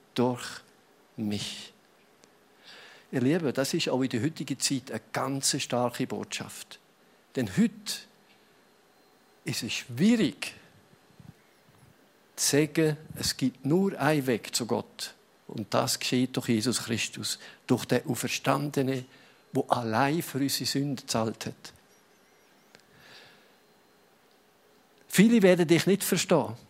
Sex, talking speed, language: male, 110 wpm, German